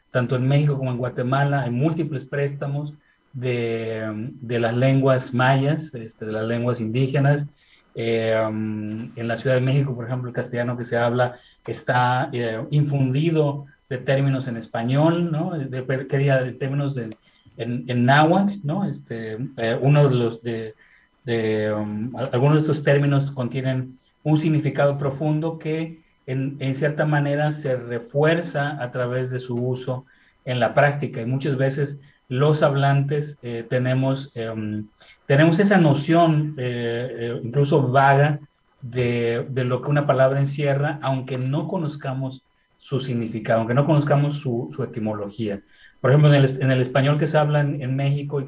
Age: 30-49